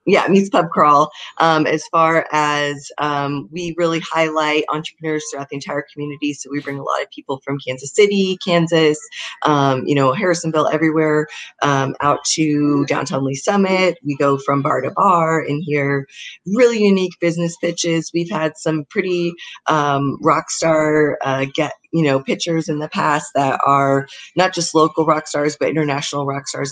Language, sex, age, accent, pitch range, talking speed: English, female, 30-49, American, 140-165 Hz, 170 wpm